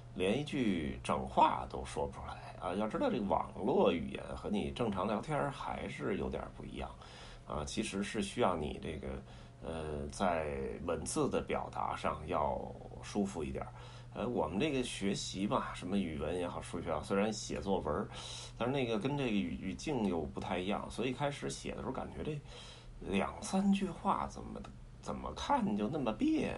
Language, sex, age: Chinese, male, 30-49